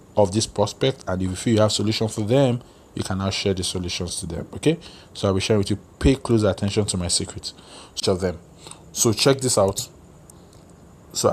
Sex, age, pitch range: male, 20-39, 95-130 Hz